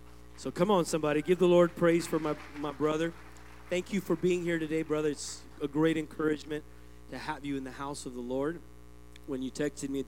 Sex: male